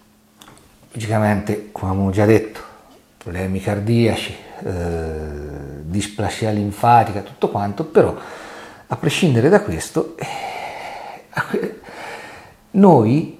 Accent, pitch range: native, 100-130 Hz